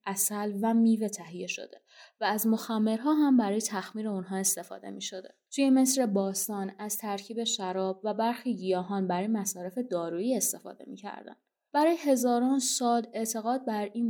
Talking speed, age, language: 150 wpm, 20-39, Persian